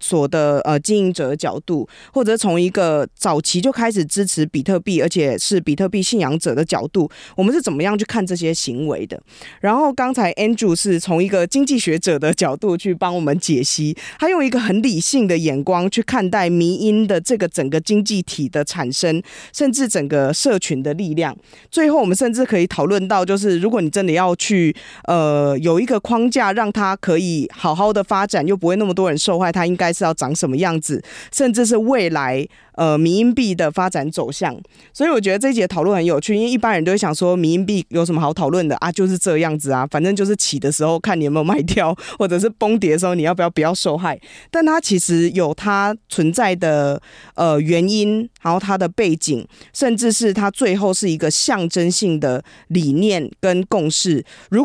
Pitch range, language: 160-205 Hz, Chinese